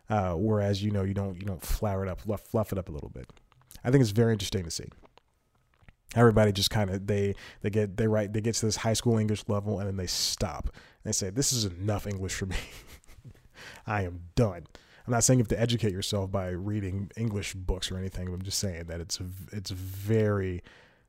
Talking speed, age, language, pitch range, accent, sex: 220 wpm, 30-49, English, 95-115 Hz, American, male